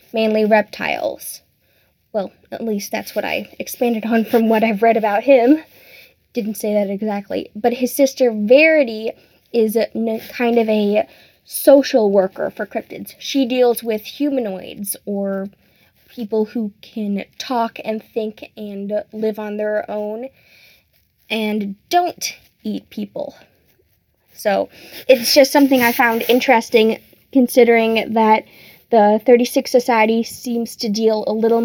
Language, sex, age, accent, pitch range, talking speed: English, female, 10-29, American, 215-245 Hz, 130 wpm